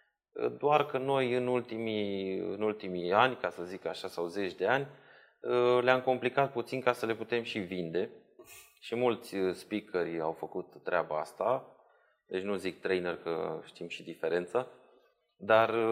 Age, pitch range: 20-39, 90-115 Hz